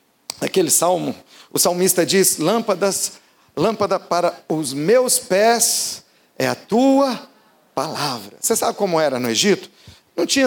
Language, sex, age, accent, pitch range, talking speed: Portuguese, male, 40-59, Brazilian, 160-225 Hz, 130 wpm